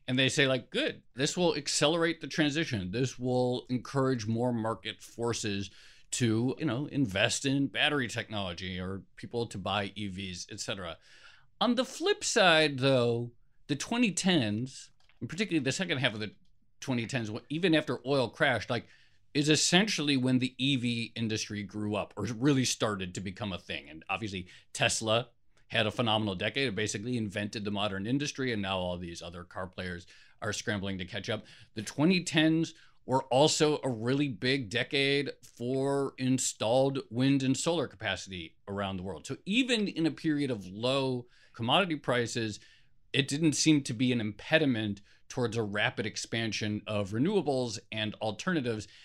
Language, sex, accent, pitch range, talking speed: English, male, American, 105-140 Hz, 160 wpm